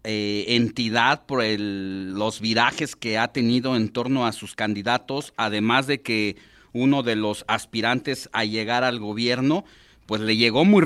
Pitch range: 105-130 Hz